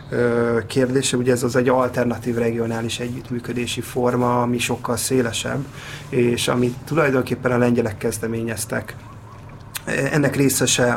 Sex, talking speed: male, 110 wpm